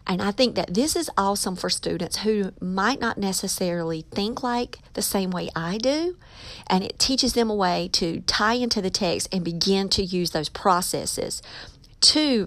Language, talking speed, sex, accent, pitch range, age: English, 185 wpm, female, American, 175-220 Hz, 40-59